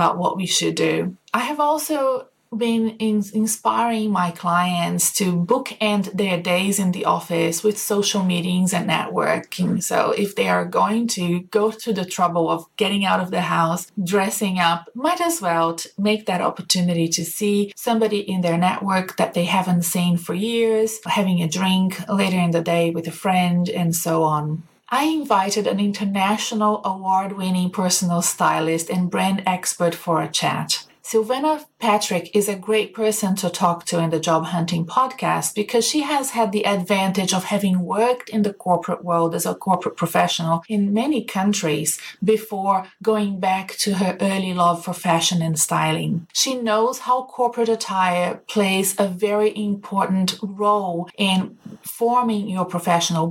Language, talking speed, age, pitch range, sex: English, 165 wpm, 30-49, 175-215 Hz, female